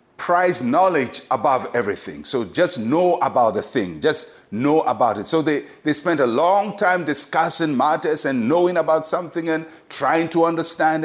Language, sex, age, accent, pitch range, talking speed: English, male, 60-79, Nigerian, 150-205 Hz, 170 wpm